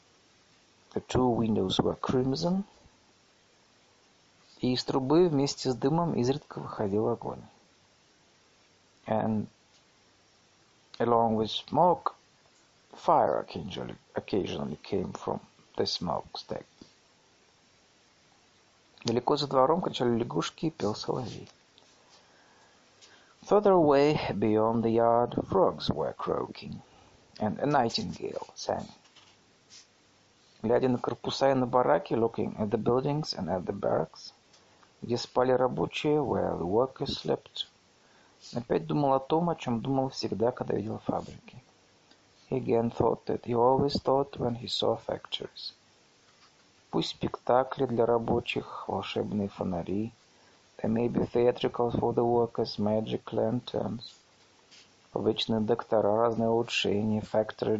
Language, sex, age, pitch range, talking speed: Russian, male, 50-69, 110-135 Hz, 105 wpm